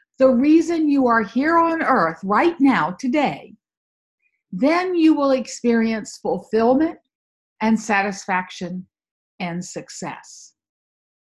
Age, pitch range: 50-69, 220-315 Hz